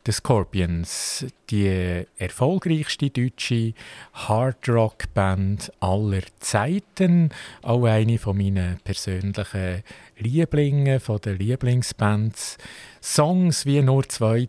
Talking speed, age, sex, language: 85 wpm, 50-69, male, German